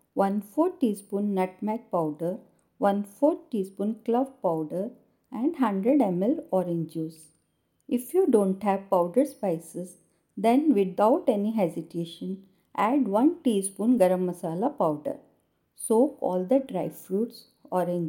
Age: 50-69